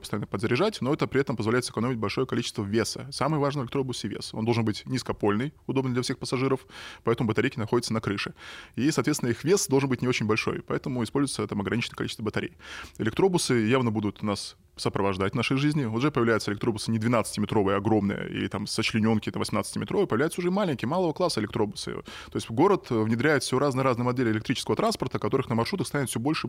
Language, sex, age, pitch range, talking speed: Russian, male, 20-39, 105-135 Hz, 195 wpm